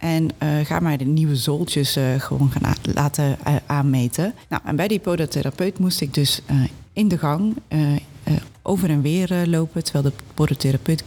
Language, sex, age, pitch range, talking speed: Dutch, female, 40-59, 140-175 Hz, 195 wpm